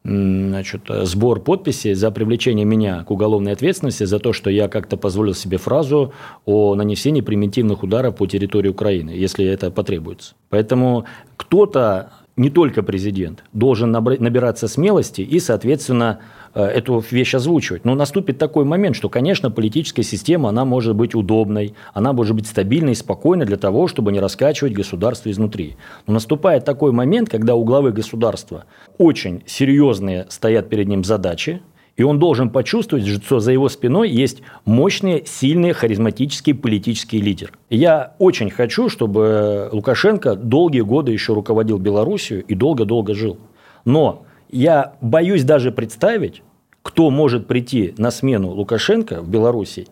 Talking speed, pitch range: 145 wpm, 105-135 Hz